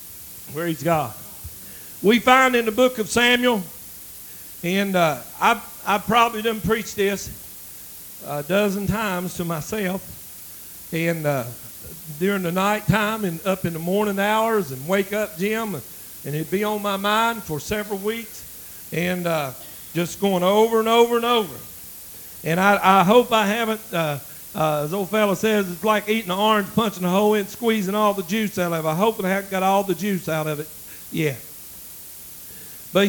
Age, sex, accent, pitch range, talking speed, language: 50-69, male, American, 170-215 Hz, 180 wpm, English